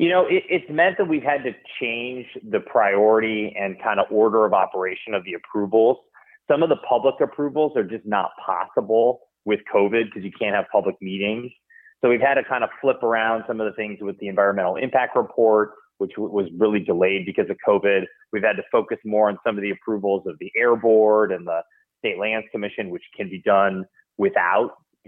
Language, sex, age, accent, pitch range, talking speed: English, male, 30-49, American, 100-125 Hz, 210 wpm